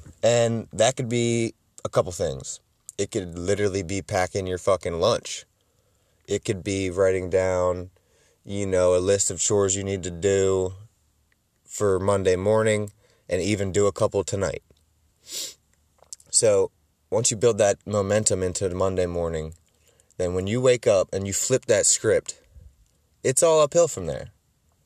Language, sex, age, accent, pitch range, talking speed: English, male, 20-39, American, 90-110 Hz, 155 wpm